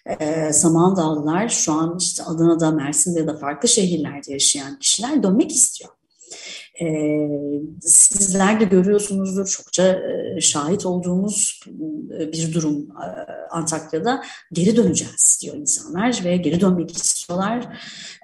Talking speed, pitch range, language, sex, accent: 100 wpm, 160-215 Hz, Turkish, female, native